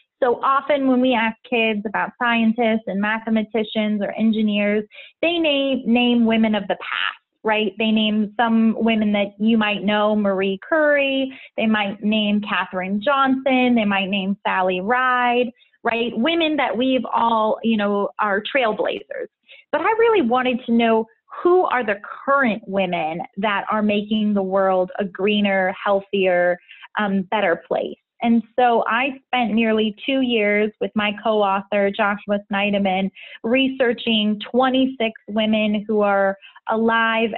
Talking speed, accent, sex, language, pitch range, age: 145 wpm, American, female, English, 205-240 Hz, 20-39